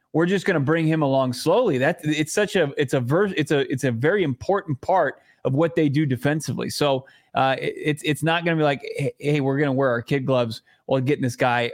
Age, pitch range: 20-39, 130-160 Hz